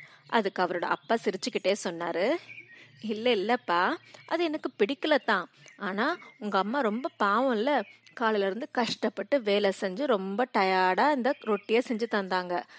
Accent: native